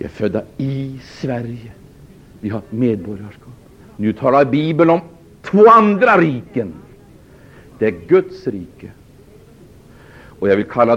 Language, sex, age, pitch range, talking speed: Swedish, male, 60-79, 125-160 Hz, 135 wpm